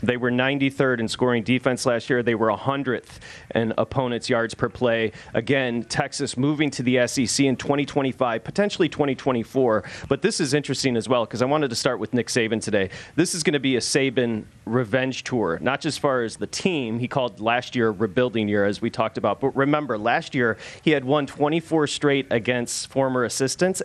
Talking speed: 200 wpm